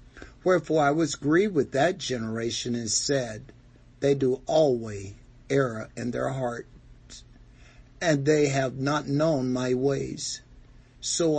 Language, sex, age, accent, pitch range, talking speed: English, male, 60-79, American, 115-140 Hz, 125 wpm